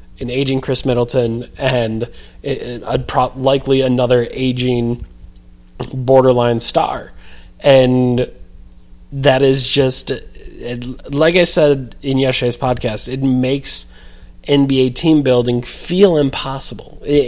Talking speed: 110 wpm